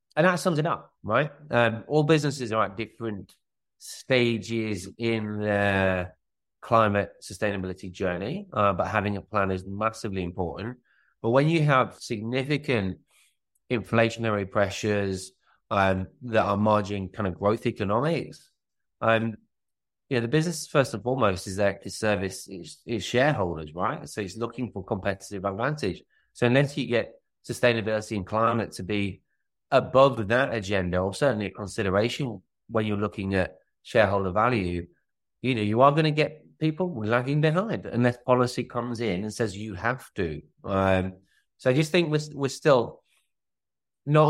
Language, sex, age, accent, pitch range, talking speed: English, male, 30-49, British, 100-125 Hz, 150 wpm